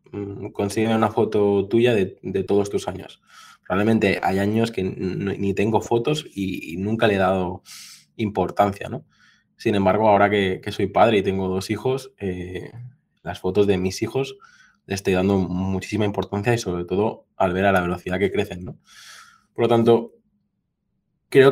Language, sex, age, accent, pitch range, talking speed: Spanish, male, 20-39, Spanish, 95-115 Hz, 175 wpm